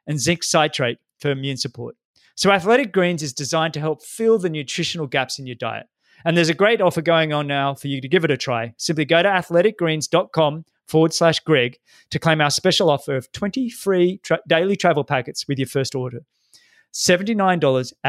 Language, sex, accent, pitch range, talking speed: English, male, Australian, 145-180 Hz, 190 wpm